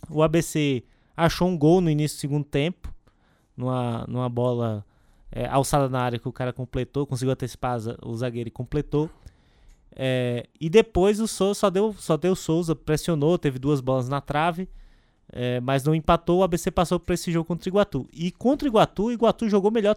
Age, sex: 20-39, male